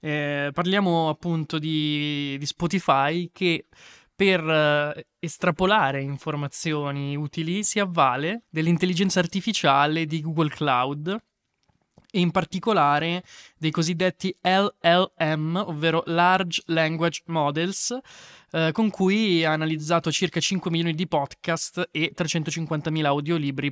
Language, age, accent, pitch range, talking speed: Italian, 20-39, native, 140-170 Hz, 105 wpm